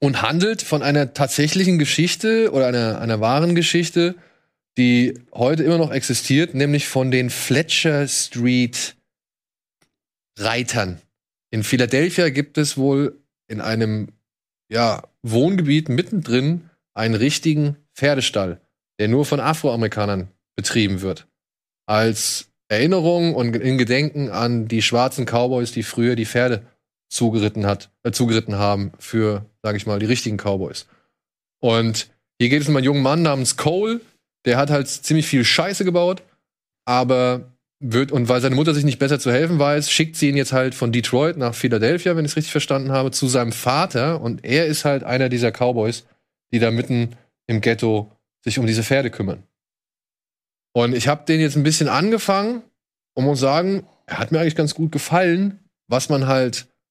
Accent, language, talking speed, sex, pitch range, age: German, German, 155 wpm, male, 115-150 Hz, 20-39